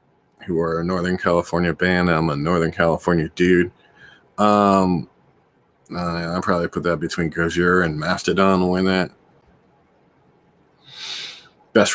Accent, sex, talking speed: American, male, 120 wpm